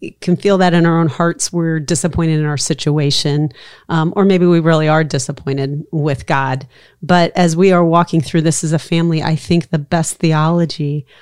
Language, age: English, 40-59